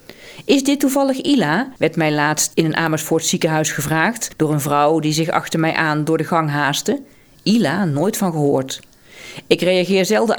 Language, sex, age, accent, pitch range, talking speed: Dutch, female, 40-59, Dutch, 150-190 Hz, 180 wpm